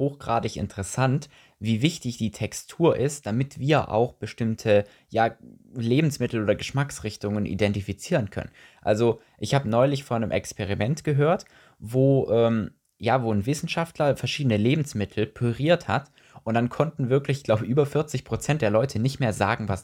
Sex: male